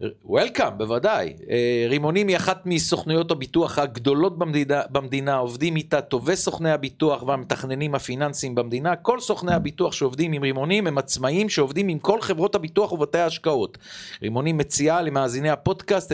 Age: 40-59